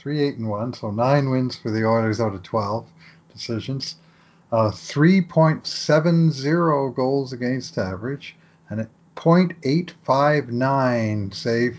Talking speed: 110 wpm